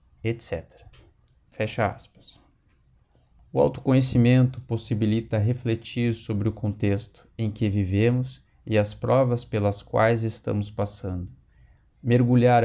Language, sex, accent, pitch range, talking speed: Portuguese, male, Brazilian, 105-125 Hz, 100 wpm